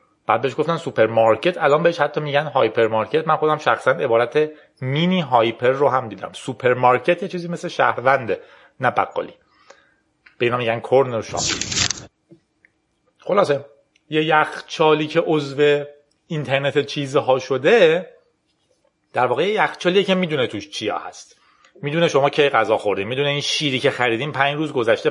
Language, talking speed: Persian, 145 wpm